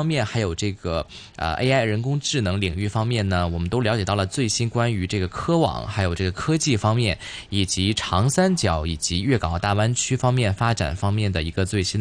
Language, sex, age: Chinese, male, 20-39